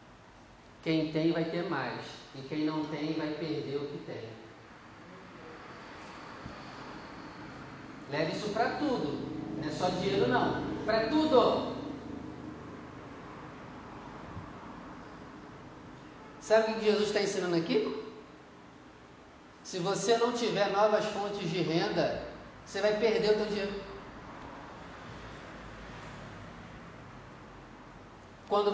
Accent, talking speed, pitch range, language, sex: Brazilian, 100 wpm, 140-200 Hz, Portuguese, male